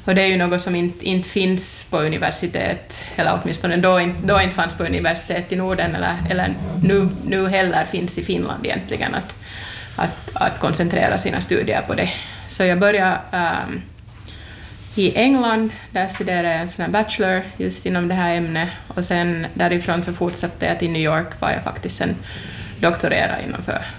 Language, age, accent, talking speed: Finnish, 20-39, native, 175 wpm